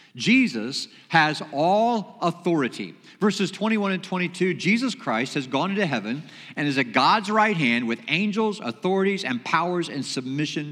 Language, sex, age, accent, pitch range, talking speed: English, male, 50-69, American, 150-215 Hz, 150 wpm